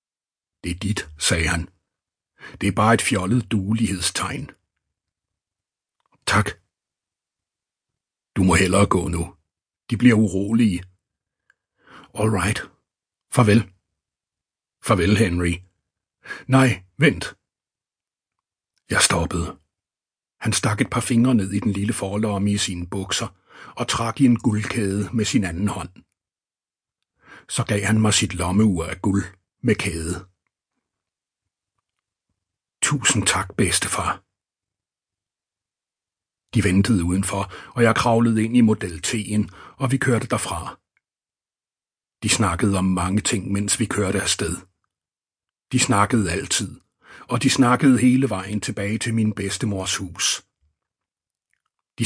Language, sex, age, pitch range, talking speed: Danish, male, 60-79, 90-115 Hz, 115 wpm